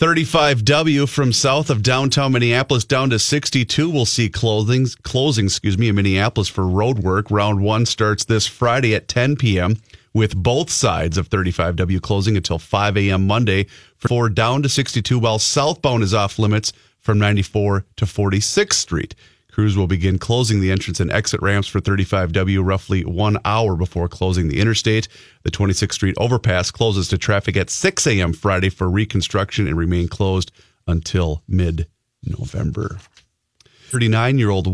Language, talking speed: English, 150 wpm